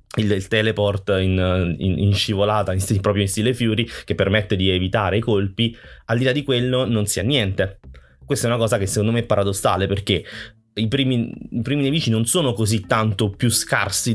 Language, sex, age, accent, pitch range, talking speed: Italian, male, 20-39, native, 100-120 Hz, 210 wpm